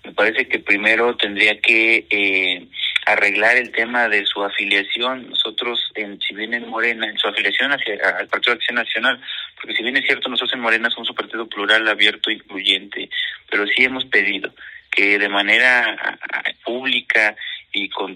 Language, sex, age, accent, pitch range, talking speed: Spanish, male, 30-49, Mexican, 105-120 Hz, 180 wpm